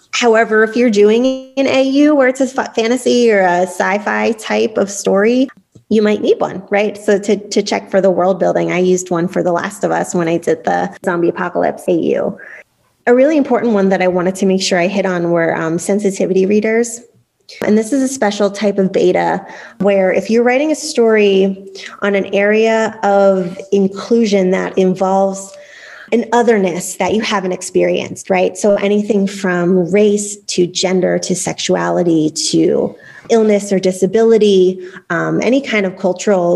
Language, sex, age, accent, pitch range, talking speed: English, female, 20-39, American, 185-225 Hz, 175 wpm